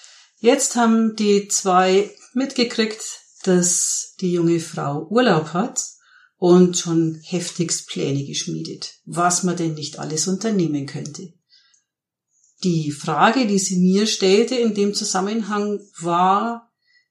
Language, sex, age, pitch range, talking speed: German, female, 50-69, 160-200 Hz, 115 wpm